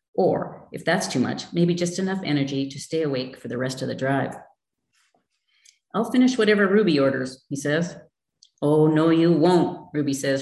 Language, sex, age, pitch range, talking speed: English, female, 40-59, 135-180 Hz, 180 wpm